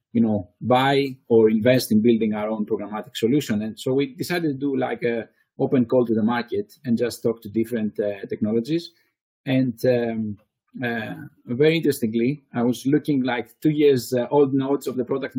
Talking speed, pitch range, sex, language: 185 wpm, 115-135 Hz, male, English